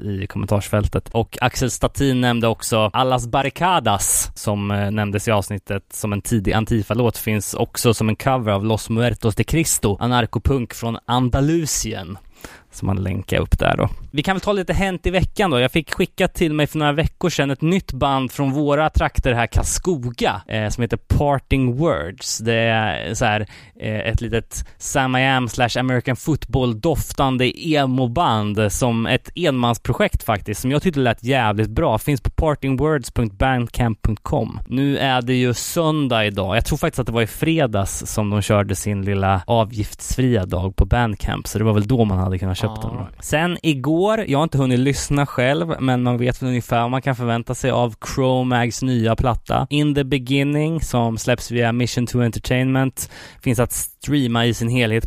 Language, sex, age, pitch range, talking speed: Swedish, male, 20-39, 110-135 Hz, 180 wpm